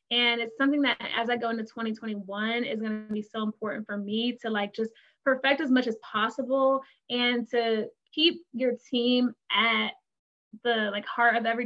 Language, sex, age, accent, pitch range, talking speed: English, female, 20-39, American, 215-255 Hz, 185 wpm